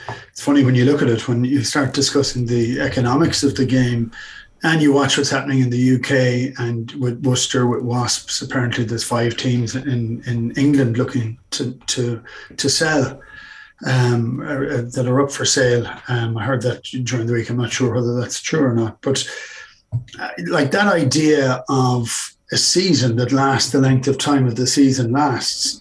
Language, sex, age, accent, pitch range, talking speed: English, male, 30-49, Irish, 120-140 Hz, 185 wpm